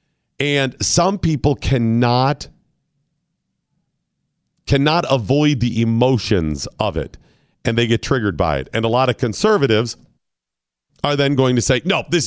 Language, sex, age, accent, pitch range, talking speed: English, male, 40-59, American, 130-185 Hz, 135 wpm